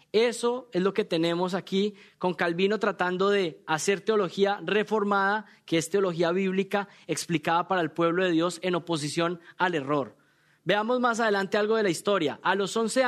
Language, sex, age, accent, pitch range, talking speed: English, male, 20-39, Colombian, 165-205 Hz, 170 wpm